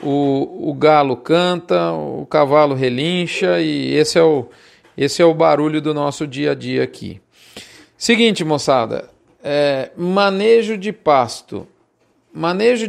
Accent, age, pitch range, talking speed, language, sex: Brazilian, 40-59, 150-190 Hz, 115 wpm, Portuguese, male